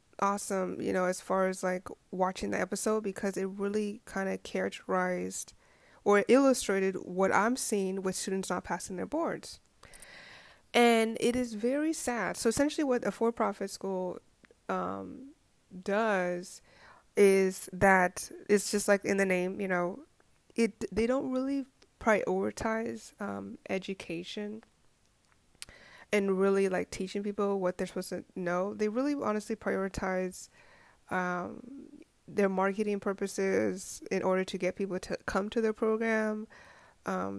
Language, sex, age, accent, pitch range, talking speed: English, female, 20-39, American, 185-220 Hz, 140 wpm